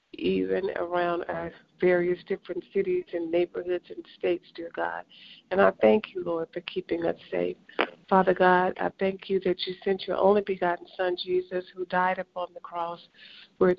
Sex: female